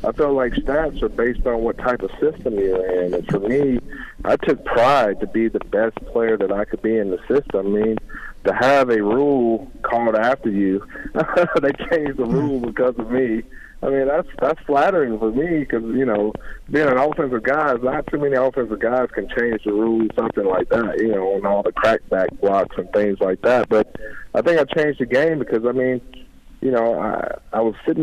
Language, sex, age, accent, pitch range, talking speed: English, male, 40-59, American, 100-120 Hz, 215 wpm